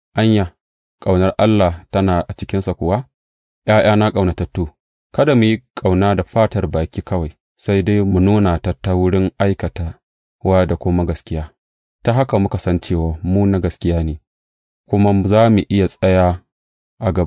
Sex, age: male, 30-49